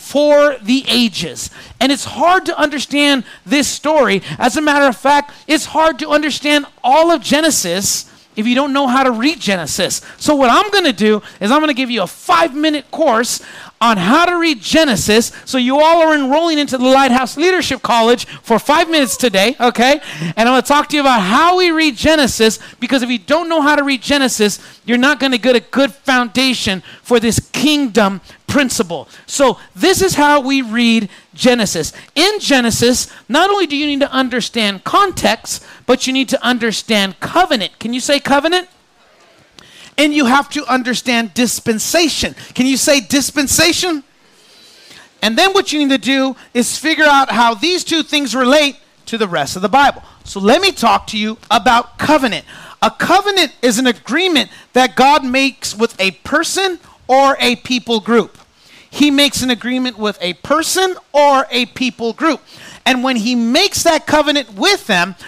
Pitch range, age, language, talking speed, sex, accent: 235-300 Hz, 40-59, English, 180 wpm, male, American